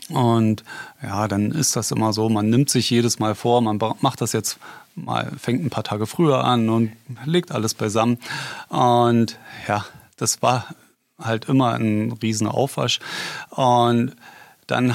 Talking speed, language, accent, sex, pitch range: 155 wpm, German, German, male, 115-135 Hz